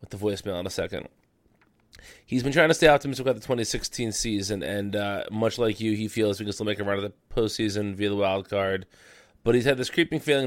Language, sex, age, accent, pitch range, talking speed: English, male, 20-39, American, 105-125 Hz, 240 wpm